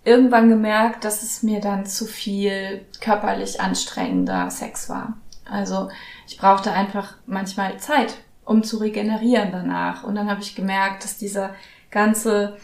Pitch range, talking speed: 195-225 Hz, 145 wpm